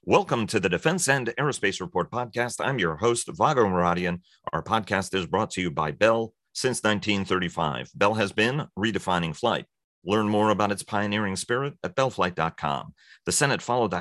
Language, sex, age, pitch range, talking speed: English, male, 40-59, 95-115 Hz, 170 wpm